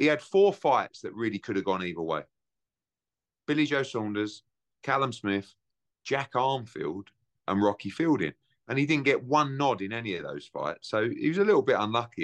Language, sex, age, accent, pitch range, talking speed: English, male, 30-49, British, 100-125 Hz, 190 wpm